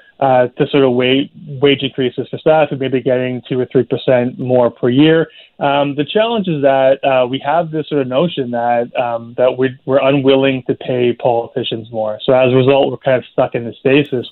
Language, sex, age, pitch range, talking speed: English, male, 20-39, 125-140 Hz, 220 wpm